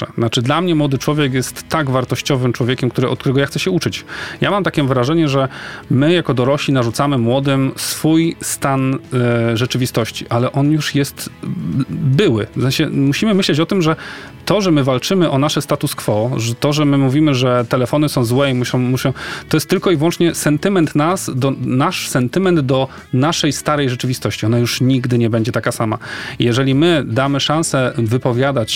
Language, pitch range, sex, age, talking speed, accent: Polish, 125-150 Hz, male, 40-59, 180 wpm, native